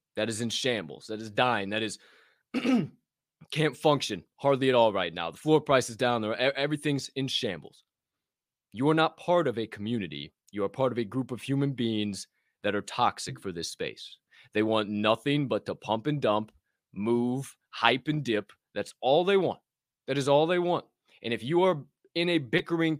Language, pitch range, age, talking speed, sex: English, 105-145 Hz, 20-39, 195 wpm, male